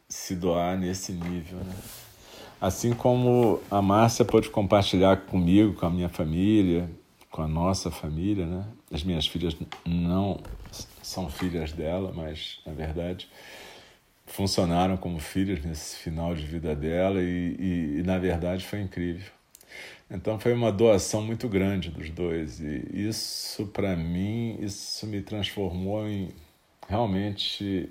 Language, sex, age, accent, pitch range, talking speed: Portuguese, male, 40-59, Brazilian, 85-100 Hz, 135 wpm